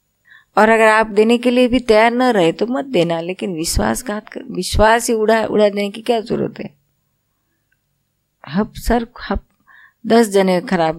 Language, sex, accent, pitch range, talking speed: Gujarati, female, native, 150-215 Hz, 120 wpm